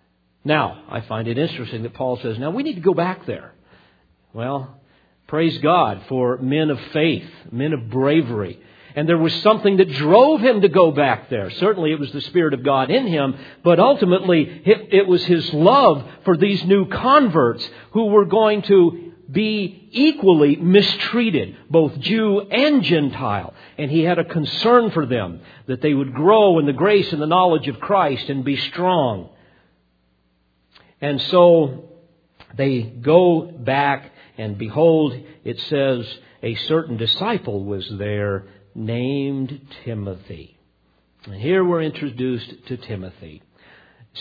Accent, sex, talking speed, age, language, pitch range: American, male, 150 wpm, 50-69, English, 115-170 Hz